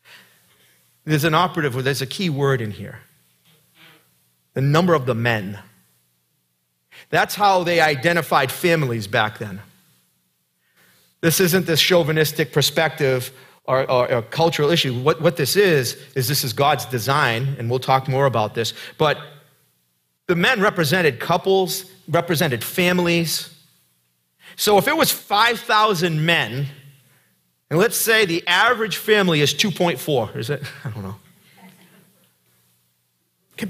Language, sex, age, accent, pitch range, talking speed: English, male, 40-59, American, 115-170 Hz, 130 wpm